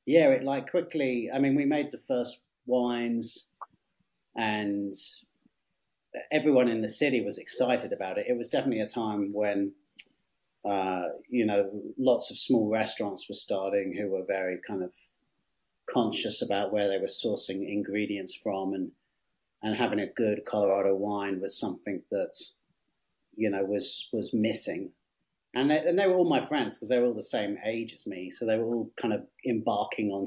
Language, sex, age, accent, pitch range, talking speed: English, male, 30-49, British, 100-120 Hz, 175 wpm